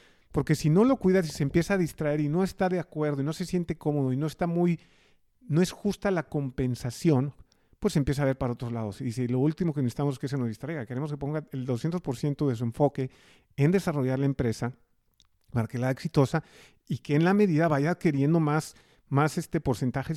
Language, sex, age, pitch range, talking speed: Spanish, male, 40-59, 130-160 Hz, 230 wpm